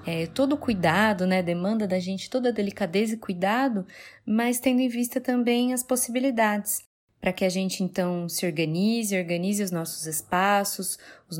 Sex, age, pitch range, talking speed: female, 20-39, 180-225 Hz, 170 wpm